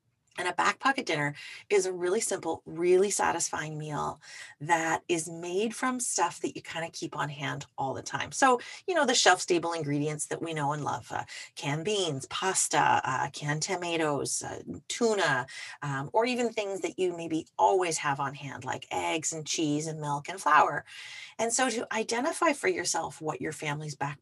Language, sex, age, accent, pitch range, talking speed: English, female, 30-49, American, 150-220 Hz, 190 wpm